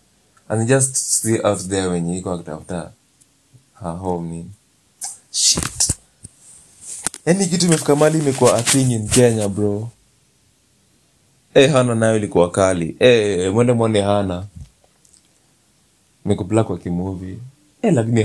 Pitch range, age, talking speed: 90-115 Hz, 30-49, 125 wpm